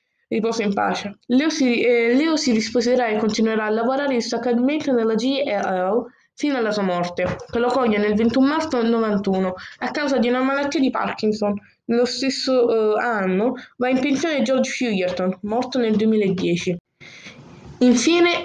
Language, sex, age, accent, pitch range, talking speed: Italian, female, 20-39, native, 205-265 Hz, 160 wpm